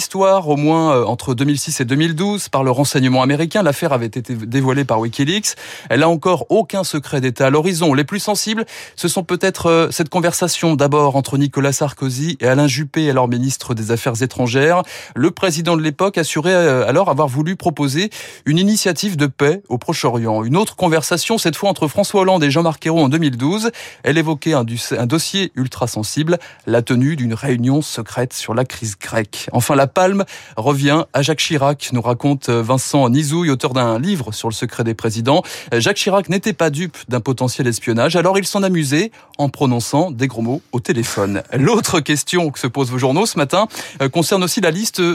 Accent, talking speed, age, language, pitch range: French, 185 wpm, 20-39, French, 130-175 Hz